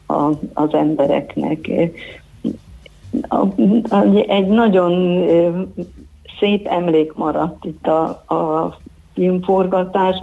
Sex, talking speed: female, 80 wpm